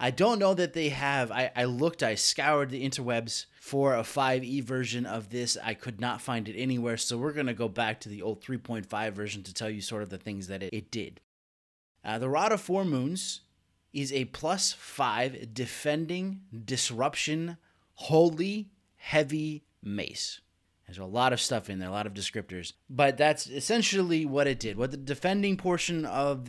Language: English